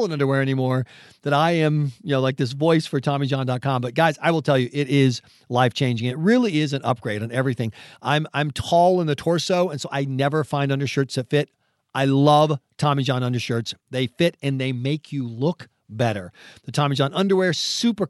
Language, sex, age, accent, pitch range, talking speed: English, male, 40-59, American, 125-170 Hz, 205 wpm